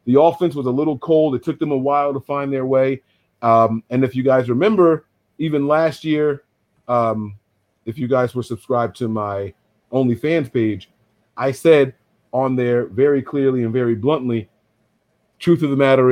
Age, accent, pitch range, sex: 40-59, American, 110-135 Hz, male